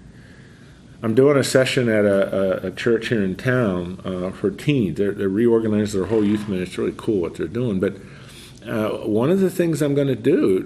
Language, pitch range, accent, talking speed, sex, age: English, 105-150 Hz, American, 215 wpm, male, 50-69